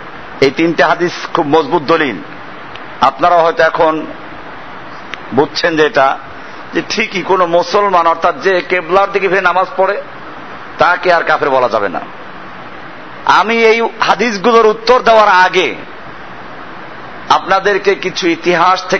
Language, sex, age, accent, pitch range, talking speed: Bengali, male, 50-69, native, 180-215 Hz, 85 wpm